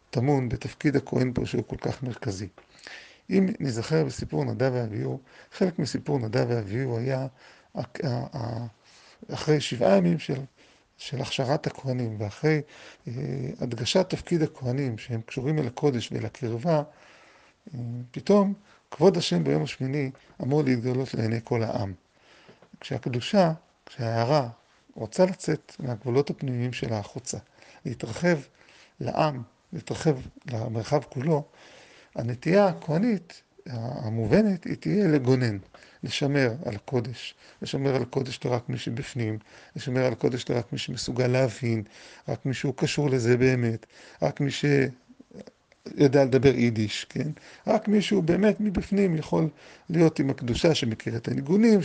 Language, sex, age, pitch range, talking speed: Hebrew, male, 40-59, 120-160 Hz, 125 wpm